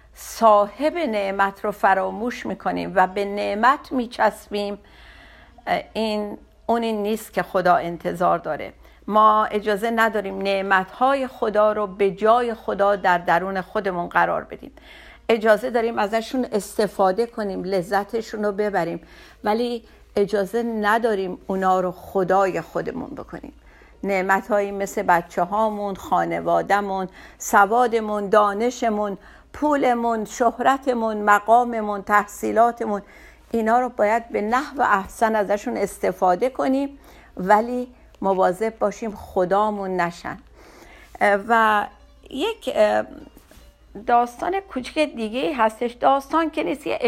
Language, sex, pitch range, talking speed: Persian, female, 200-240 Hz, 105 wpm